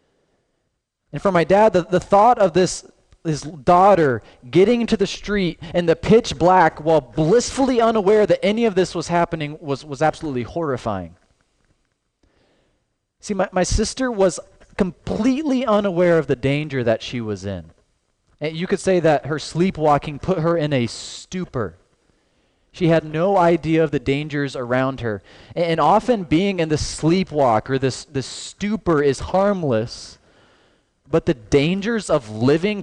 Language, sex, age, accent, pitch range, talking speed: English, male, 30-49, American, 140-195 Hz, 155 wpm